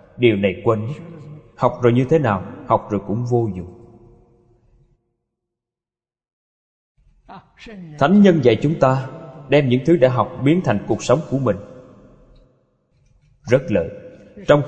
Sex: male